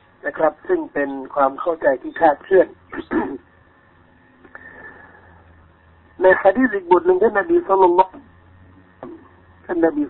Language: Thai